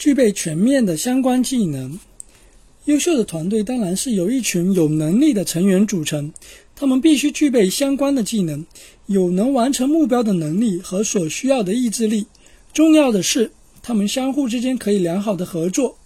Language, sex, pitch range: Chinese, male, 190-270 Hz